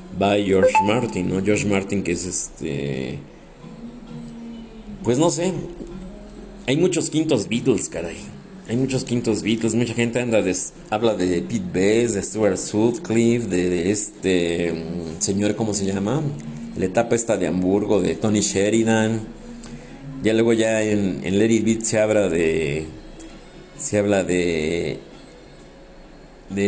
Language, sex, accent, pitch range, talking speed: Spanish, male, Mexican, 95-125 Hz, 135 wpm